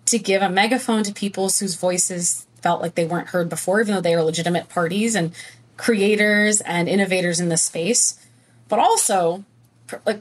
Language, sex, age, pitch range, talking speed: English, female, 20-39, 175-225 Hz, 175 wpm